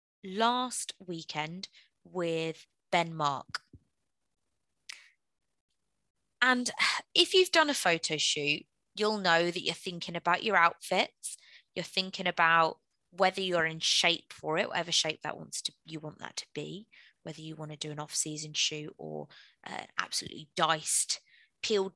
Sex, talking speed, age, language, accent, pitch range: female, 140 wpm, 20-39, English, British, 165-215 Hz